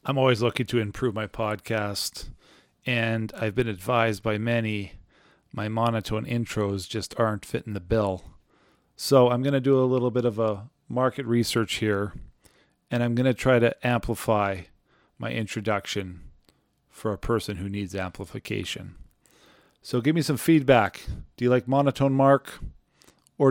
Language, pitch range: English, 105-145 Hz